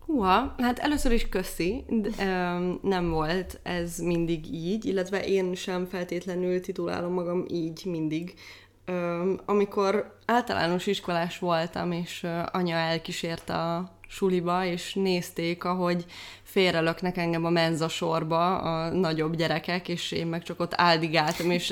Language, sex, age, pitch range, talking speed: Hungarian, female, 20-39, 170-200 Hz, 125 wpm